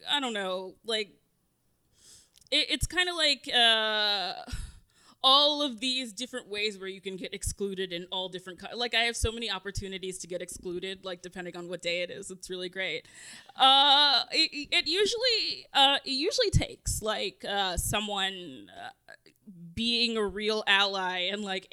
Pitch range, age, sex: 180-225 Hz, 20-39, female